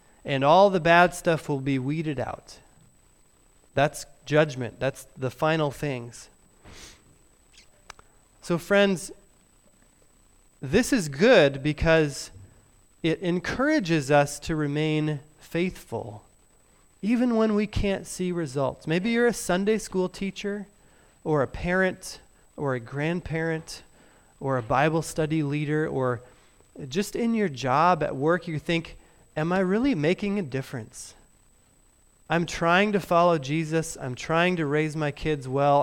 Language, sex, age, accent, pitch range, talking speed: English, male, 30-49, American, 140-180 Hz, 130 wpm